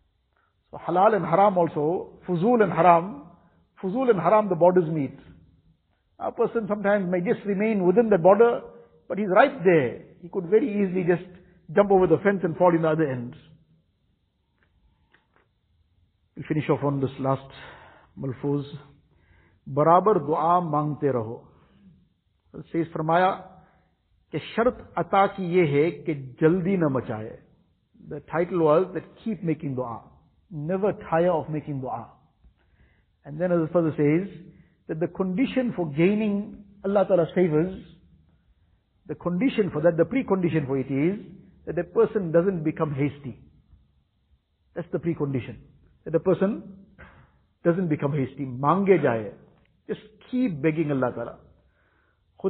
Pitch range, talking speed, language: 140-190 Hz, 125 wpm, English